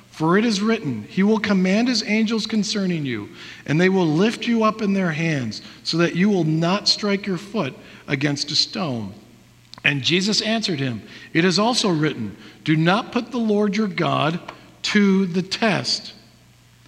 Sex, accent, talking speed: male, American, 175 wpm